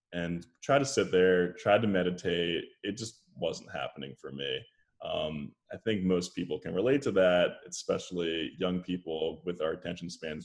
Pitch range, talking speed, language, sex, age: 90-120 Hz, 170 wpm, English, male, 10-29